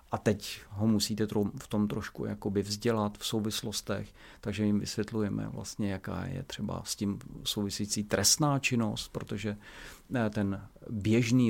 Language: Czech